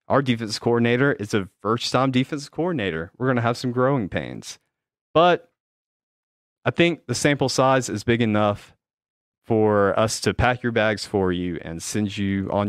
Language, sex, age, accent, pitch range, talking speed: English, male, 30-49, American, 100-130 Hz, 175 wpm